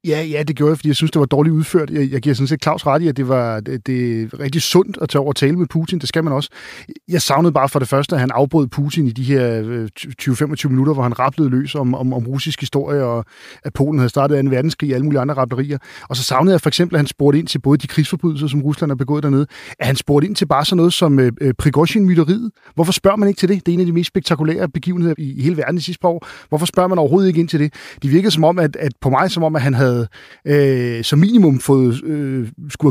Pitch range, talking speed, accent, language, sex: 135-160 Hz, 285 wpm, native, Danish, male